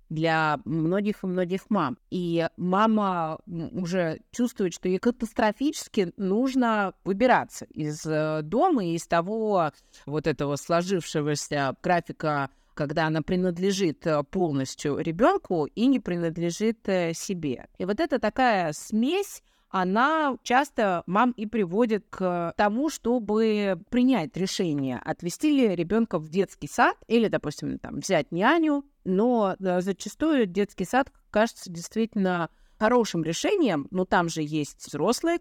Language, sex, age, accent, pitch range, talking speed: Russian, female, 30-49, native, 165-230 Hz, 120 wpm